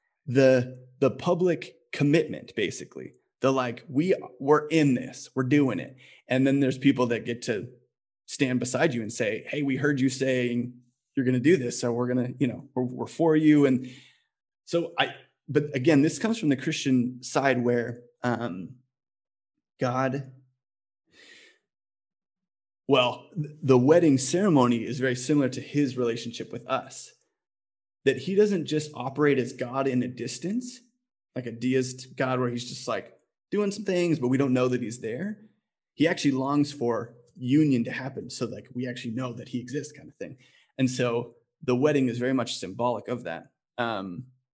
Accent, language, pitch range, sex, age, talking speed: American, English, 125-150 Hz, male, 20-39, 175 wpm